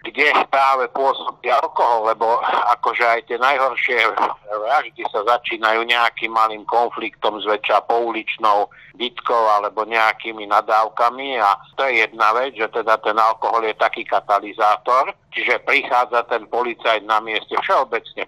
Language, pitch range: Slovak, 105-120 Hz